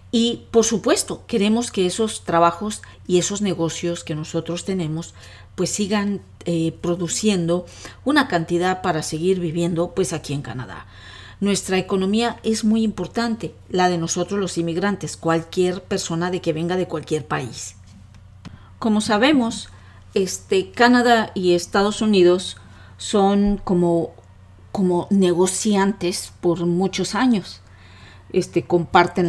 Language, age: Spanish, 40-59